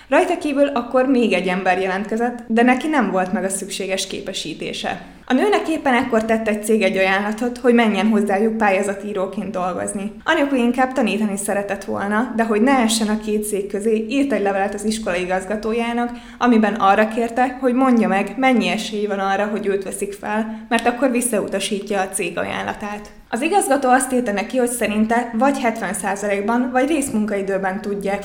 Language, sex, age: Hungarian, female, 20-39